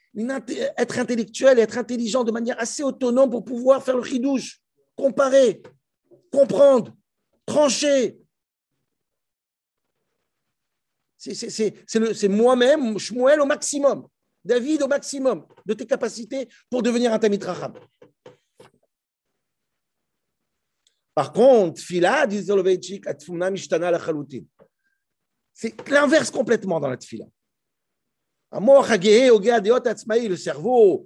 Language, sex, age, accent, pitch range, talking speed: French, male, 50-69, French, 185-250 Hz, 95 wpm